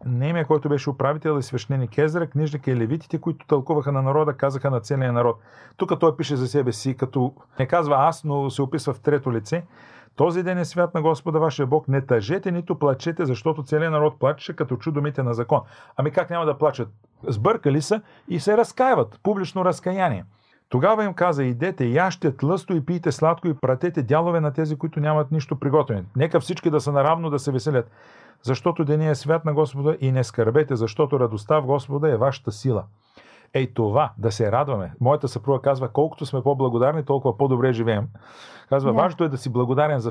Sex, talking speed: male, 195 wpm